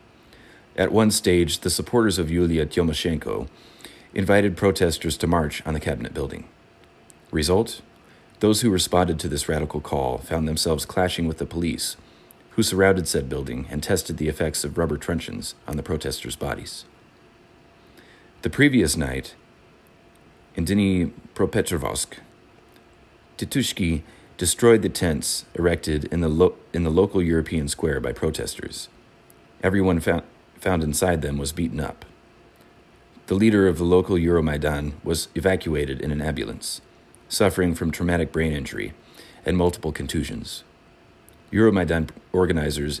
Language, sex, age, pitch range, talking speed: English, male, 30-49, 75-95 Hz, 135 wpm